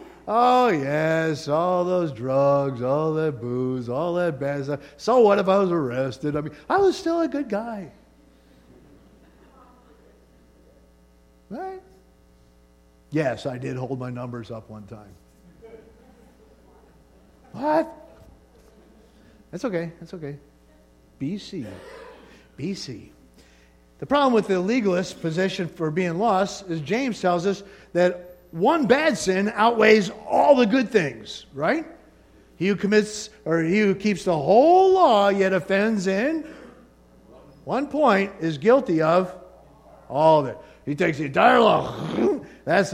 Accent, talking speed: American, 130 wpm